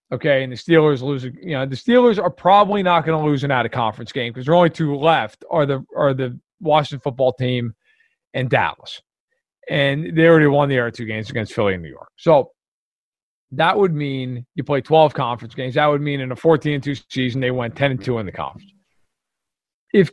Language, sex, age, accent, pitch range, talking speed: English, male, 40-59, American, 135-185 Hz, 215 wpm